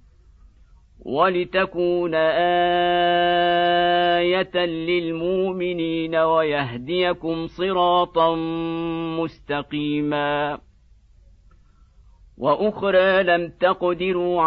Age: 50-69